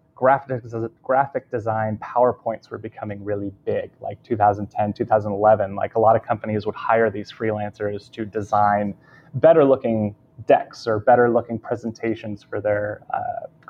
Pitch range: 105-125 Hz